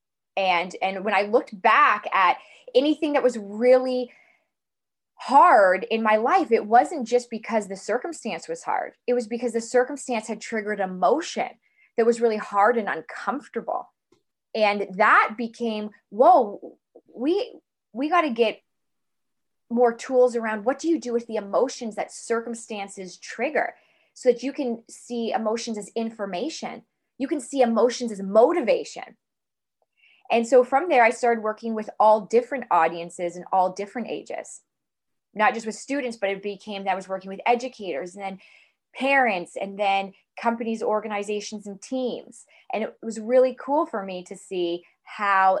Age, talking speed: 20-39, 160 wpm